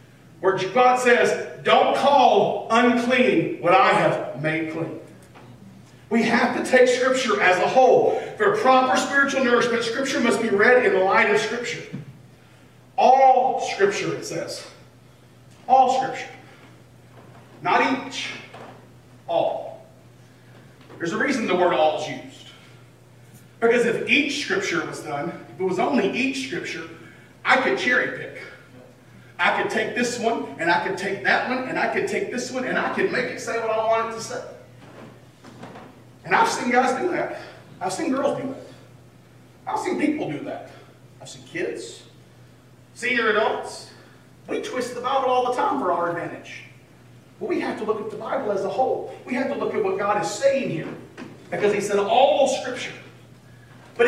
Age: 40-59